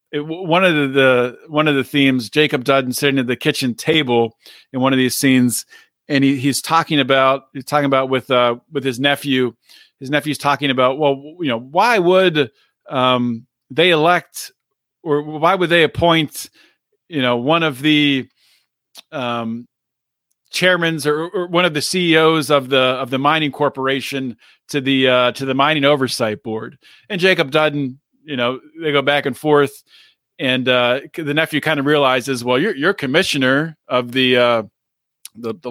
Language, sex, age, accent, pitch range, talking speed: English, male, 40-59, American, 130-165 Hz, 175 wpm